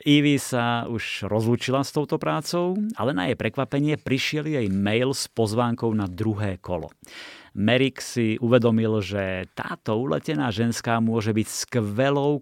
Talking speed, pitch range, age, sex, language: 140 wpm, 100-120 Hz, 30-49, male, Slovak